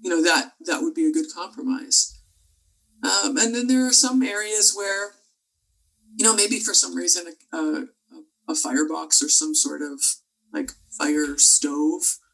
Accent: American